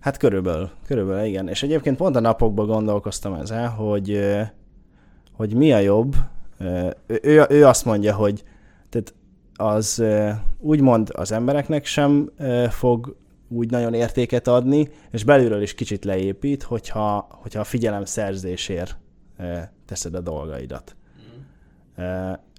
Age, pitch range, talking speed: 20-39, 100-130 Hz, 120 wpm